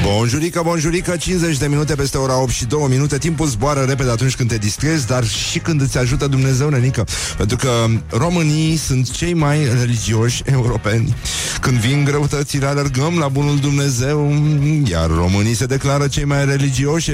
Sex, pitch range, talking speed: male, 125-140 Hz, 165 wpm